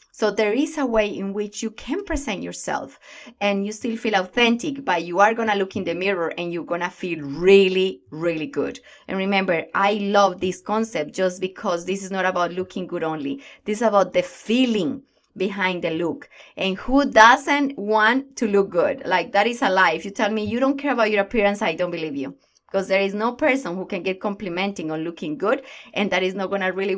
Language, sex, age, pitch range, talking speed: English, female, 20-39, 185-235 Hz, 225 wpm